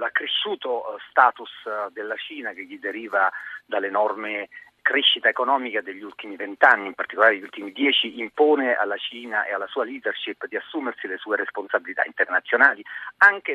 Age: 40-59